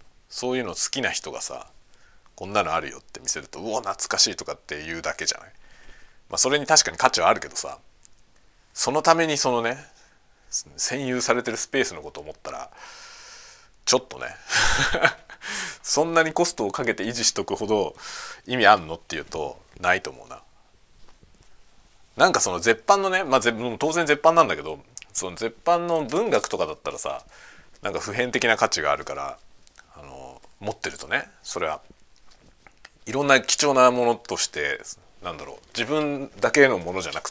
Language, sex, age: Japanese, male, 40-59